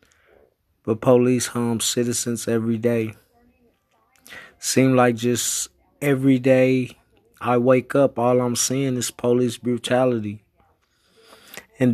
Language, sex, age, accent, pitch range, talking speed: English, male, 20-39, American, 115-135 Hz, 105 wpm